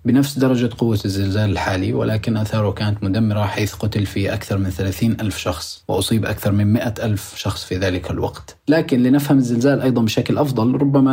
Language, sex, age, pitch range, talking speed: Arabic, male, 30-49, 95-115 Hz, 180 wpm